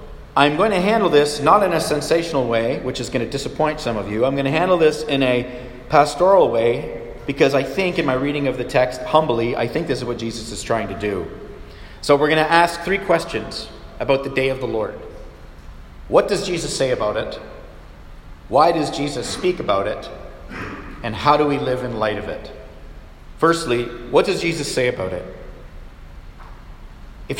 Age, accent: 40-59, American